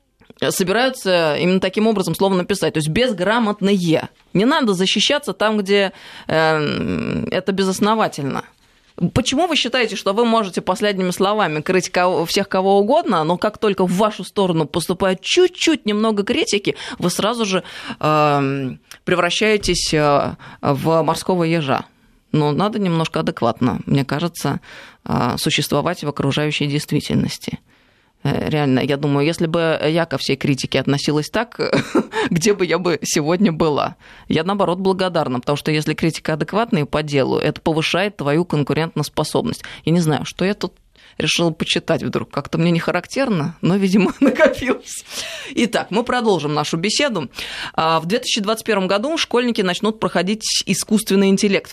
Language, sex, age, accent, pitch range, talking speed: Russian, female, 20-39, native, 155-210 Hz, 135 wpm